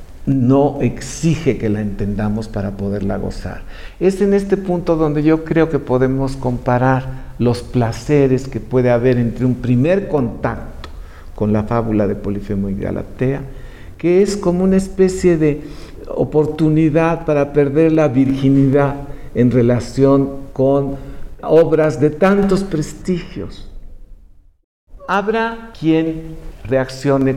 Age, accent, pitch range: 60-79, Mexican, 115-155 Hz